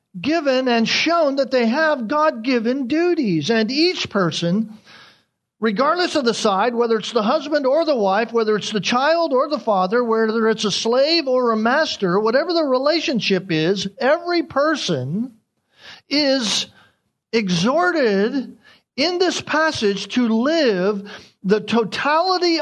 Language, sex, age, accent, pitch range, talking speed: English, male, 50-69, American, 175-255 Hz, 135 wpm